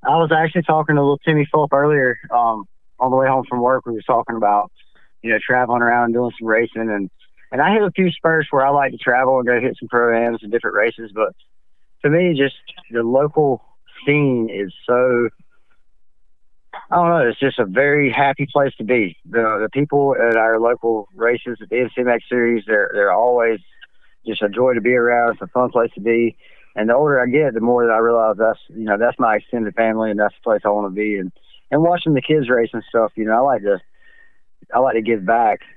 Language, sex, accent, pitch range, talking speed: English, male, American, 110-130 Hz, 230 wpm